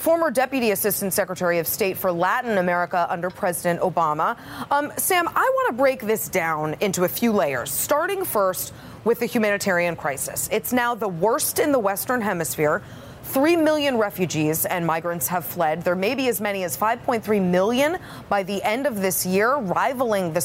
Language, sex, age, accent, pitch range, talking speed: English, female, 30-49, American, 165-240 Hz, 180 wpm